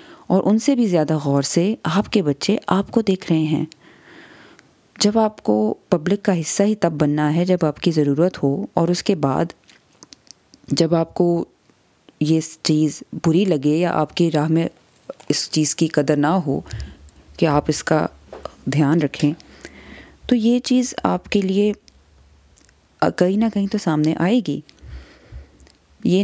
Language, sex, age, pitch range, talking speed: Urdu, female, 20-39, 150-190 Hz, 165 wpm